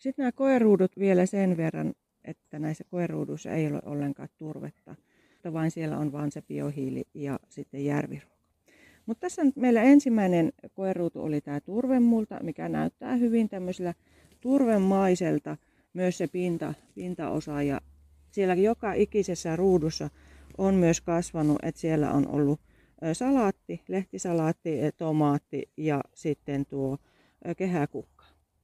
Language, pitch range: Finnish, 155-200 Hz